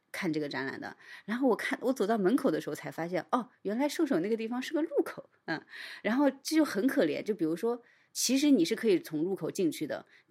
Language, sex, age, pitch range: Chinese, female, 30-49, 155-235 Hz